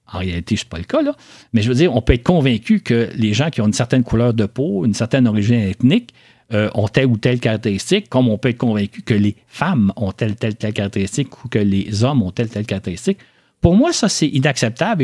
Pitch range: 105-130 Hz